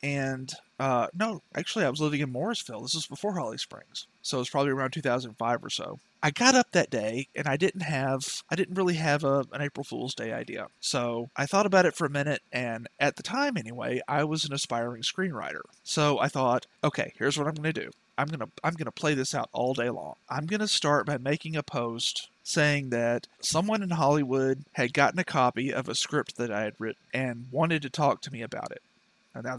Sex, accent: male, American